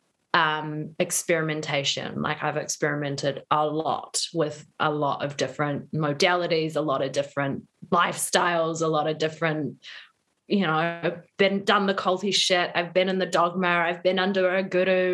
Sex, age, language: female, 20-39, English